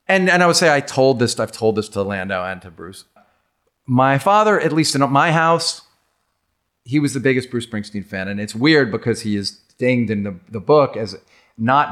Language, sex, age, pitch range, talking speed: English, male, 40-59, 105-140 Hz, 215 wpm